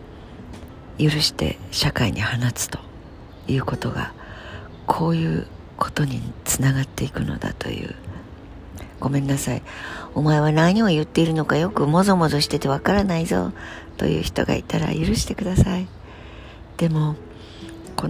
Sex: female